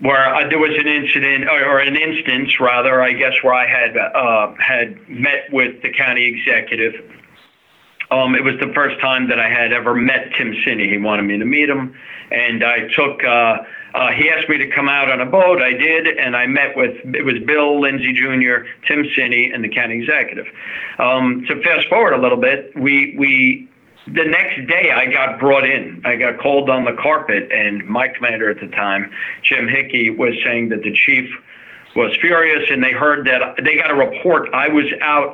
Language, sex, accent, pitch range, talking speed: English, male, American, 125-150 Hz, 205 wpm